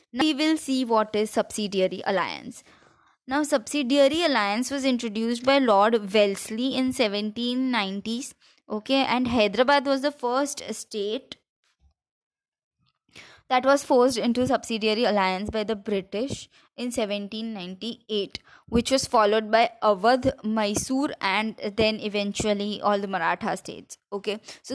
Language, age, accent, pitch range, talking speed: English, 20-39, Indian, 210-265 Hz, 125 wpm